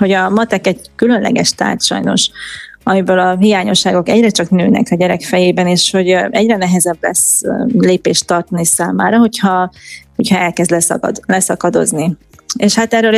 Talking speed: 140 wpm